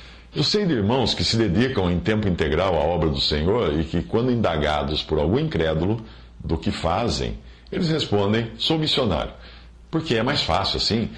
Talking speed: 175 wpm